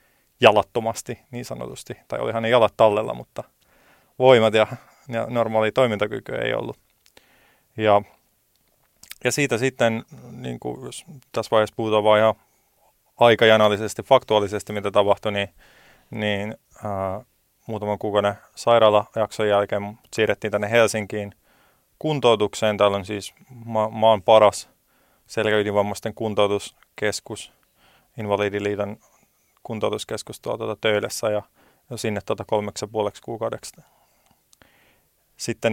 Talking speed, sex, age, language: 105 wpm, male, 30-49, Finnish